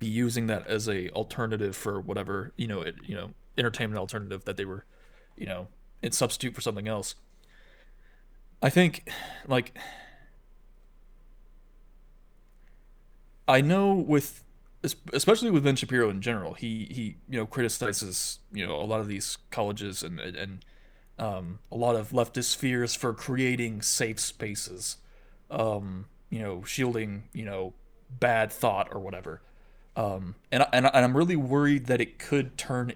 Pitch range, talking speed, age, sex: 110-130 Hz, 150 wpm, 20-39, male